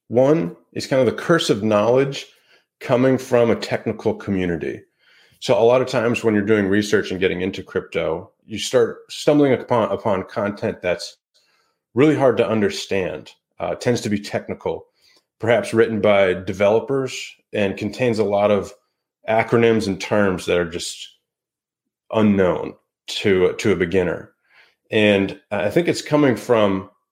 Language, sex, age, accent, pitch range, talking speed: English, male, 30-49, American, 100-130 Hz, 150 wpm